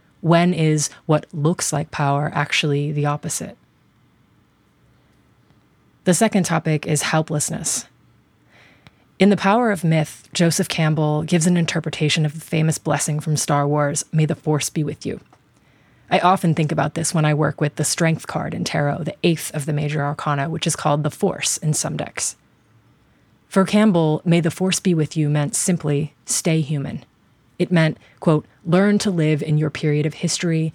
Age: 30-49